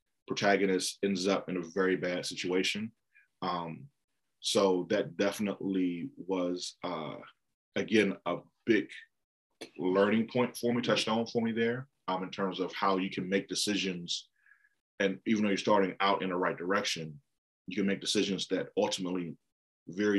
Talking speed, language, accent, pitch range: 155 wpm, English, American, 90-105 Hz